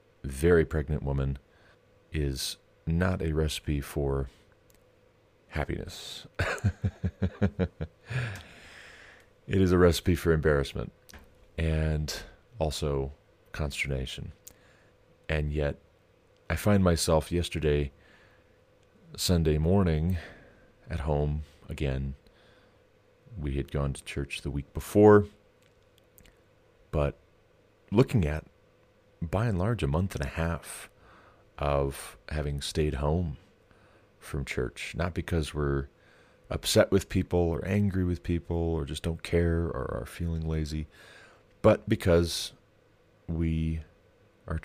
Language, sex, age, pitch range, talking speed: English, male, 40-59, 70-95 Hz, 100 wpm